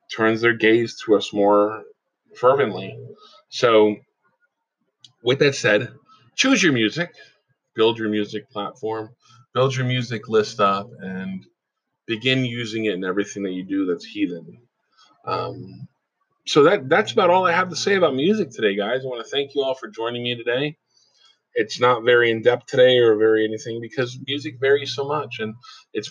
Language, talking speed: English, 170 wpm